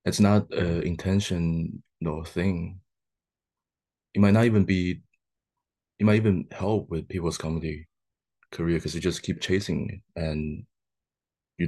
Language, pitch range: English, 80-95 Hz